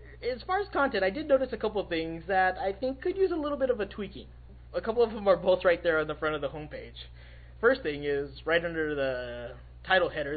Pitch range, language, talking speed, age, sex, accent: 140-200 Hz, English, 260 wpm, 20-39, male, American